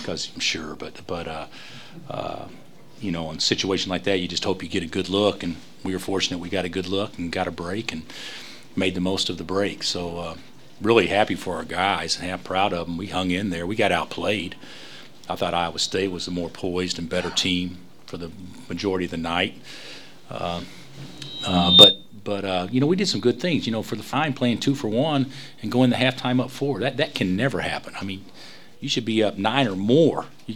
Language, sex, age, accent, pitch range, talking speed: English, male, 40-59, American, 90-110 Hz, 240 wpm